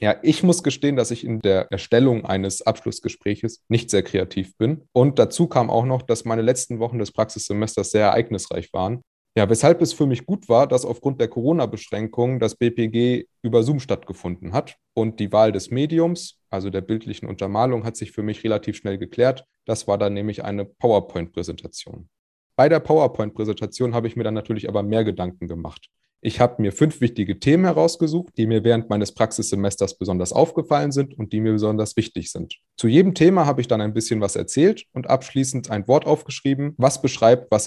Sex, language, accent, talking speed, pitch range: male, German, German, 190 wpm, 100-130 Hz